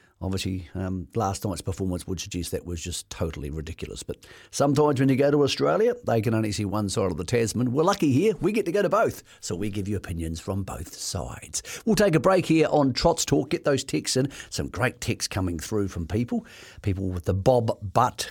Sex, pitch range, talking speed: male, 95-125 Hz, 225 wpm